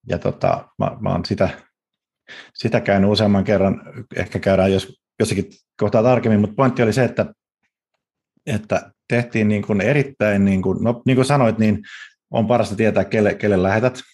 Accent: native